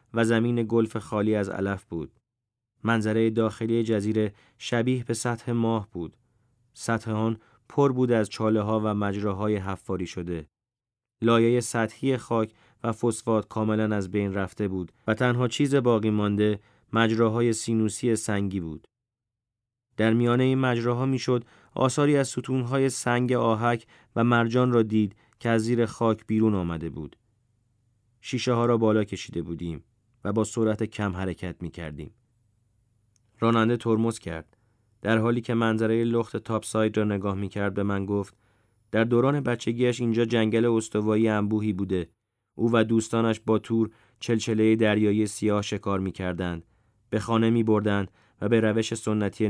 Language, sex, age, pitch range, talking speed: Persian, male, 30-49, 105-115 Hz, 145 wpm